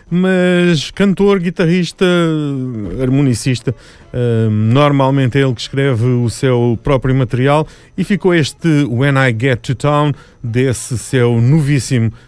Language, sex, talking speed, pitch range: Portuguese, male, 120 wpm, 115-155 Hz